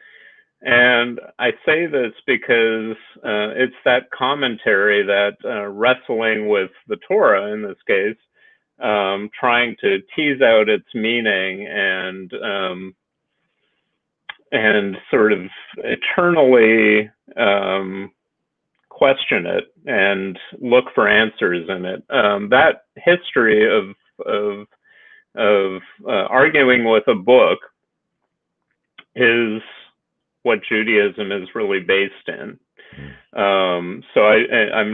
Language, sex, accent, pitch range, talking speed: English, male, American, 100-130 Hz, 105 wpm